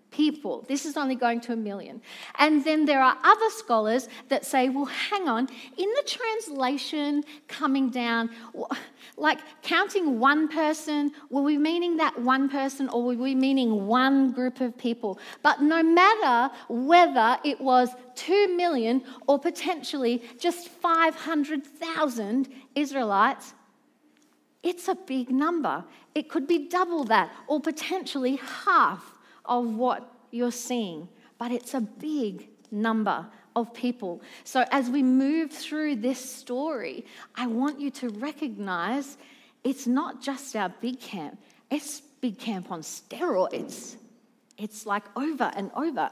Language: English